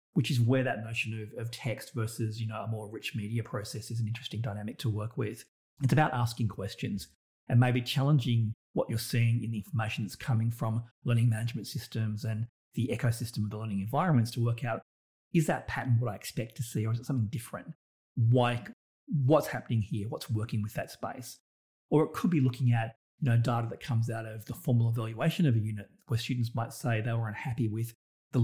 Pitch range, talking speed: 110-125 Hz, 215 wpm